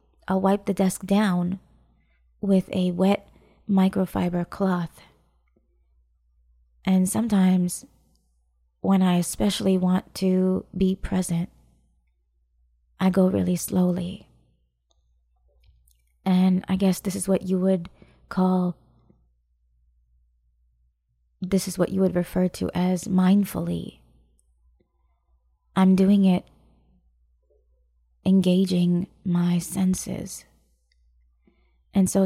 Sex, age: female, 20-39